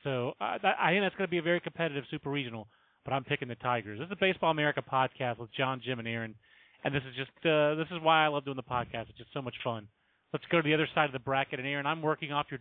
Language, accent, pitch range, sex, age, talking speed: English, American, 135-175 Hz, male, 30-49, 290 wpm